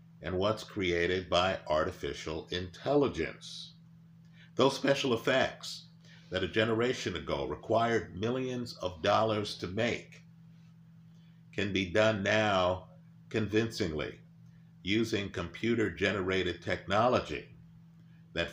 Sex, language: male, English